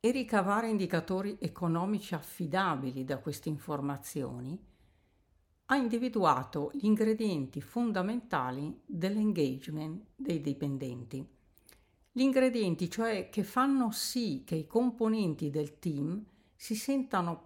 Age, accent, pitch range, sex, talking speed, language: 50-69, native, 150-220 Hz, female, 100 wpm, Italian